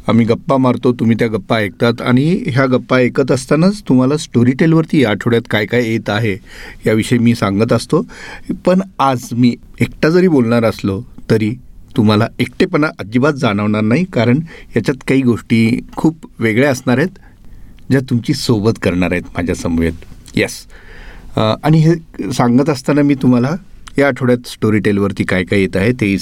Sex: male